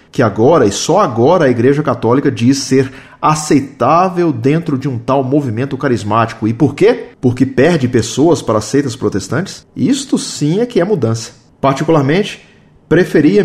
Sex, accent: male, Brazilian